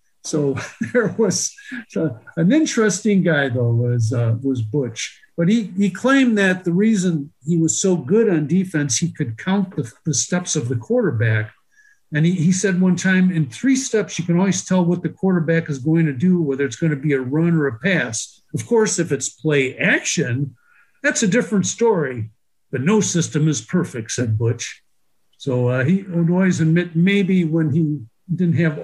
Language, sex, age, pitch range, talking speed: English, male, 50-69, 135-190 Hz, 190 wpm